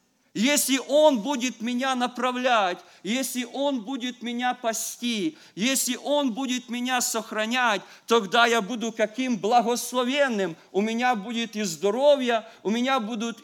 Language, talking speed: English, 125 wpm